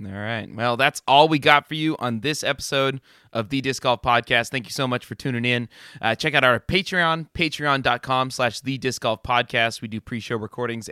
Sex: male